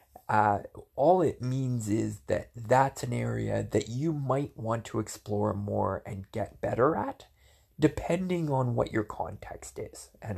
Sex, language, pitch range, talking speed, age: male, English, 105-125 Hz, 155 wpm, 20-39